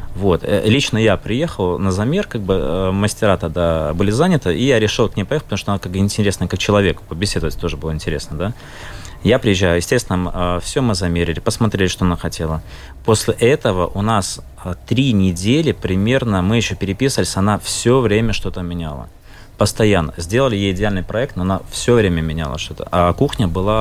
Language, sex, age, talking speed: Russian, male, 20-39, 175 wpm